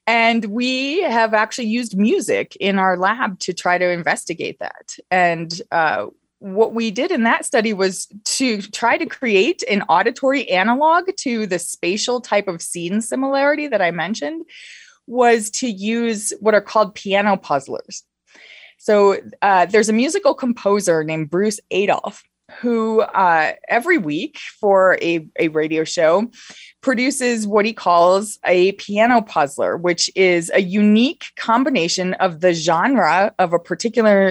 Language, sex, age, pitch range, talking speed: English, female, 20-39, 185-245 Hz, 145 wpm